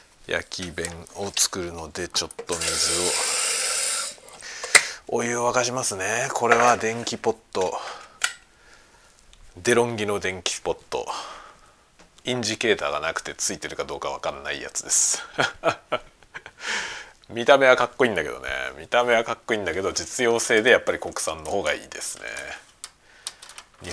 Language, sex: Japanese, male